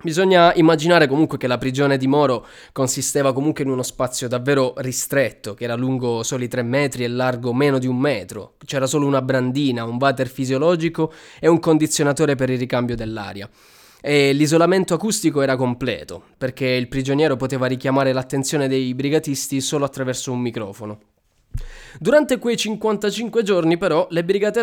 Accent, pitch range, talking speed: native, 125-175 Hz, 160 wpm